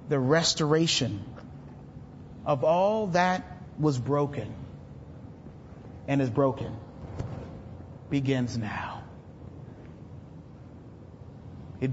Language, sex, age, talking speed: English, male, 40-59, 65 wpm